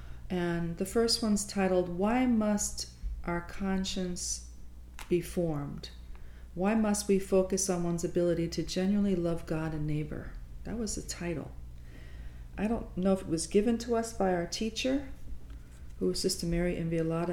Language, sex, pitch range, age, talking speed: English, female, 150-190 Hz, 40-59, 155 wpm